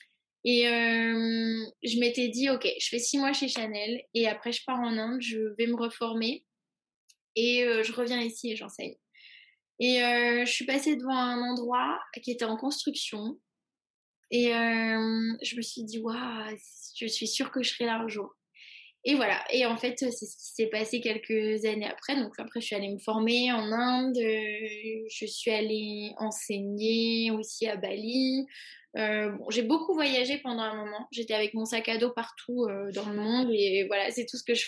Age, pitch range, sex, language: 20-39, 220-250 Hz, female, French